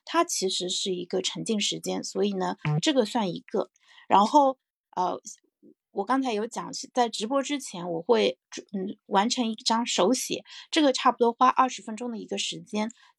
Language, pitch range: Chinese, 195-260 Hz